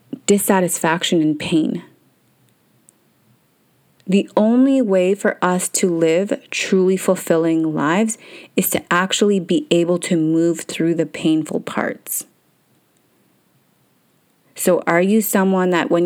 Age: 30-49